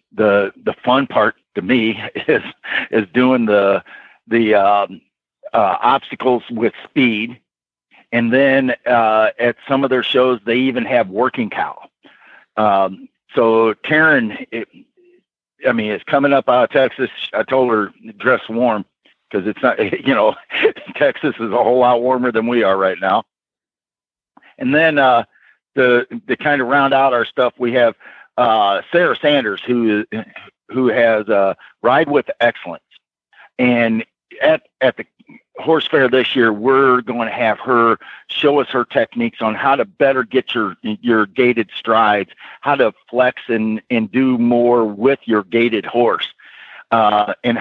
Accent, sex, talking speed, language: American, male, 155 wpm, English